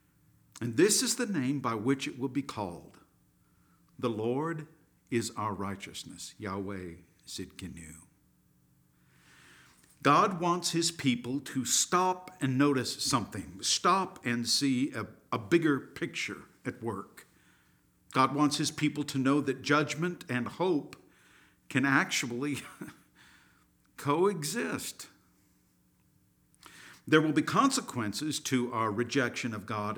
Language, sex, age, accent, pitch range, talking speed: English, male, 50-69, American, 100-145 Hz, 115 wpm